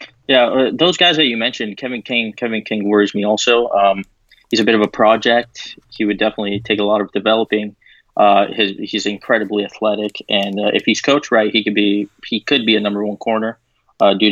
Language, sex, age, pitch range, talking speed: English, male, 20-39, 105-110 Hz, 215 wpm